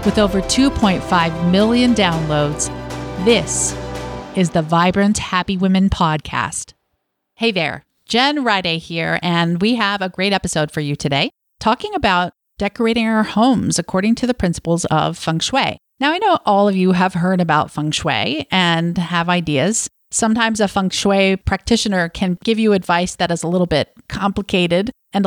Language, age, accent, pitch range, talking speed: English, 40-59, American, 170-225 Hz, 160 wpm